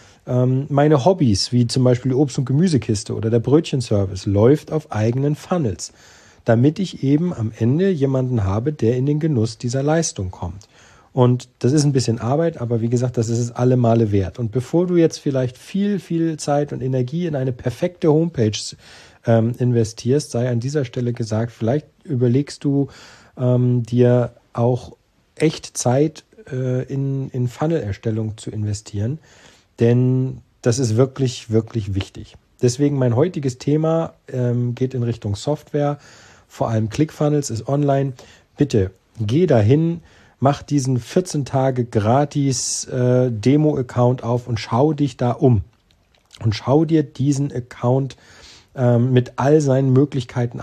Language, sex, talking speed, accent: German, male, 150 wpm, German